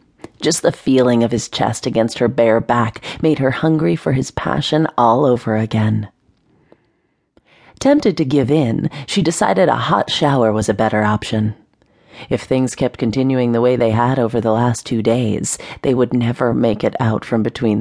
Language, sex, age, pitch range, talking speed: English, female, 40-59, 120-155 Hz, 180 wpm